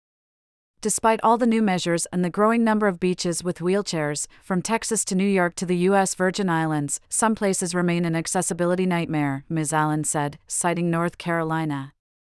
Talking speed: 170 wpm